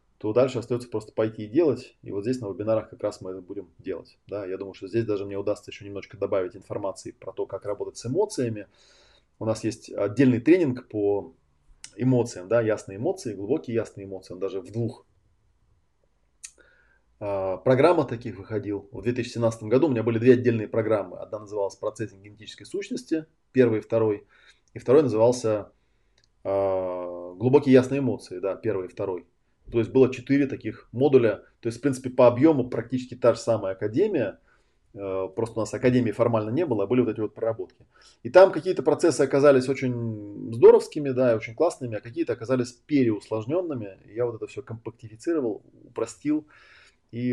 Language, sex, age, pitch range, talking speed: Russian, male, 20-39, 105-130 Hz, 170 wpm